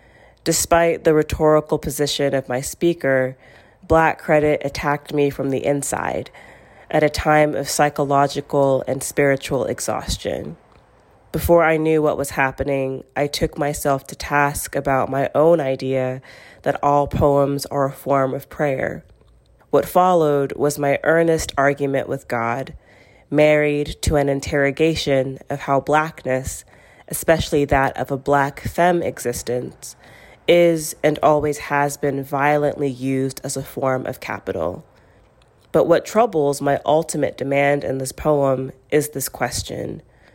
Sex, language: female, English